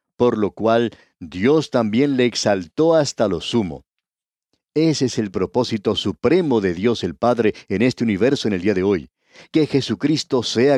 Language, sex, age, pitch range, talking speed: Spanish, male, 50-69, 105-135 Hz, 165 wpm